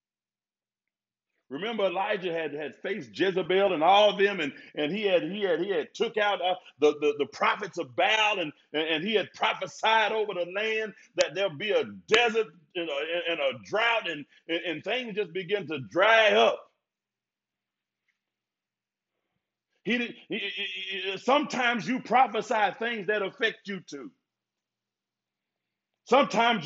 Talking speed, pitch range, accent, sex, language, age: 145 wpm, 190-235 Hz, American, male, English, 50-69